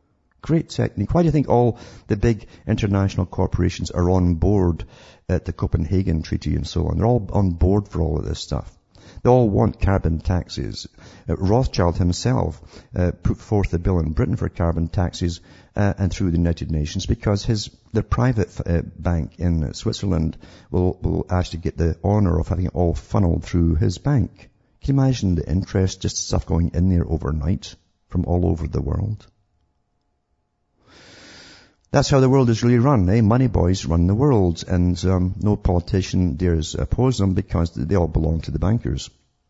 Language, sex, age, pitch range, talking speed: English, male, 50-69, 85-105 Hz, 180 wpm